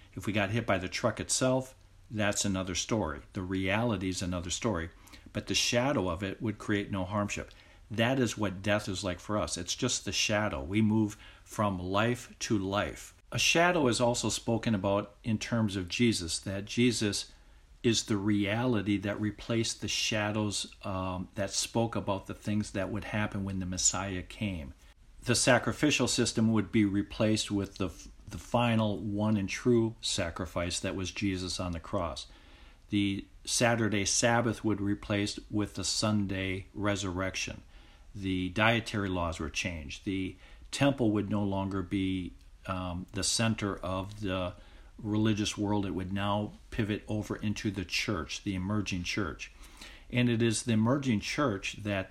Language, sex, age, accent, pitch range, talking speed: English, male, 50-69, American, 95-110 Hz, 160 wpm